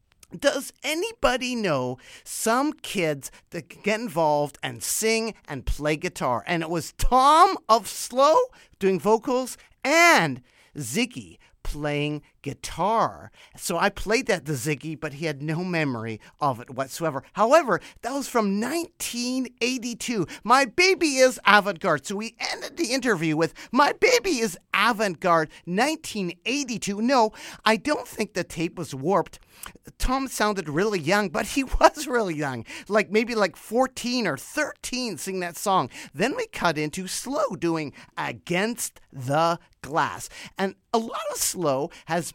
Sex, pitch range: male, 150-240 Hz